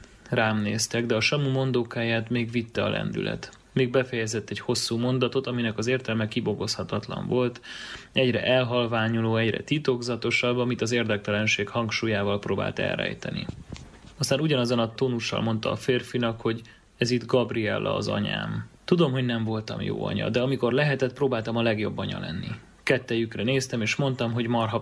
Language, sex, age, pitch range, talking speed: Hungarian, male, 30-49, 110-125 Hz, 150 wpm